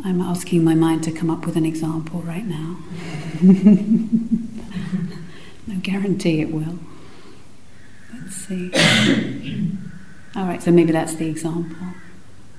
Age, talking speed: 40-59, 120 wpm